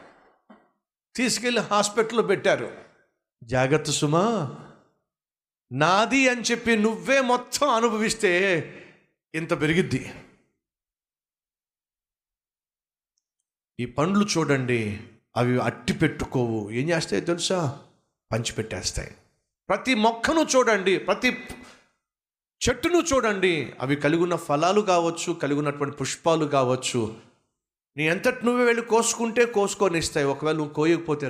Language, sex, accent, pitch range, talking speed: Telugu, male, native, 125-205 Hz, 60 wpm